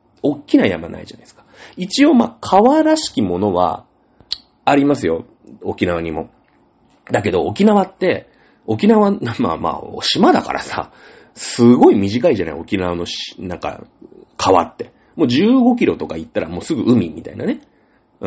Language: Japanese